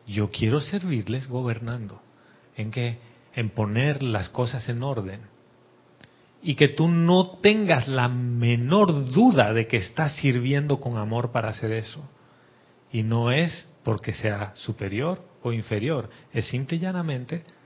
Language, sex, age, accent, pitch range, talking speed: Spanish, male, 40-59, Mexican, 115-155 Hz, 140 wpm